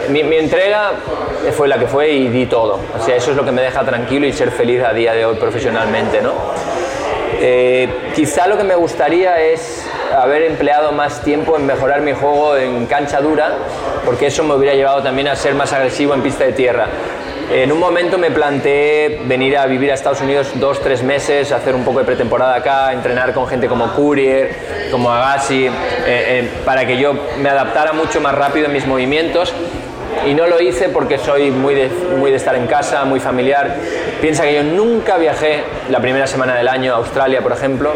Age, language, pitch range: 20-39, Spanish, 125-150 Hz